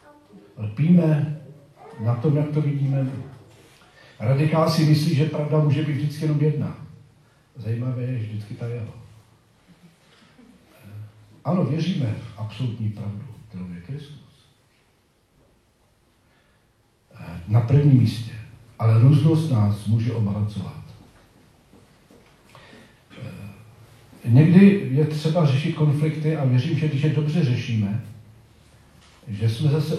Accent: native